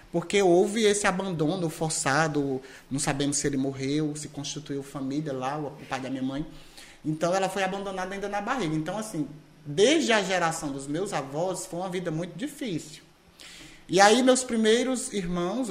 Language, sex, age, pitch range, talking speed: Portuguese, male, 20-39, 145-195 Hz, 170 wpm